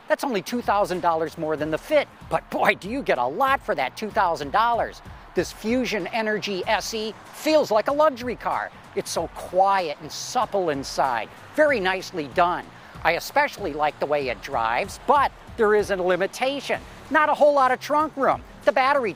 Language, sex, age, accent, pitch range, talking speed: English, male, 50-69, American, 170-250 Hz, 175 wpm